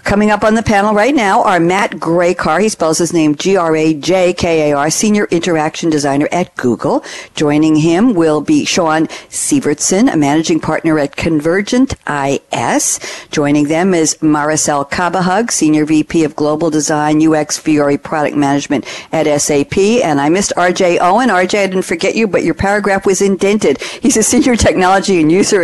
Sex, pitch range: female, 150-185 Hz